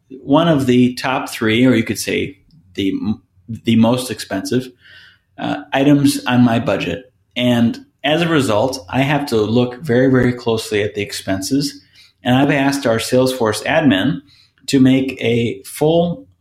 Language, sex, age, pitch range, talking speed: English, male, 30-49, 105-135 Hz, 155 wpm